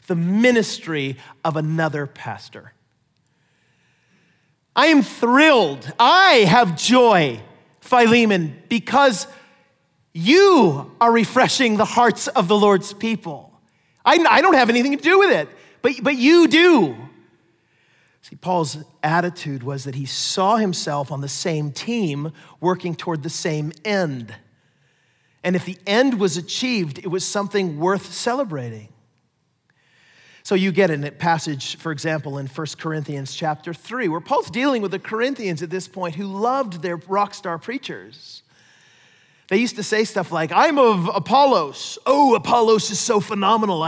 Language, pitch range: English, 155-230 Hz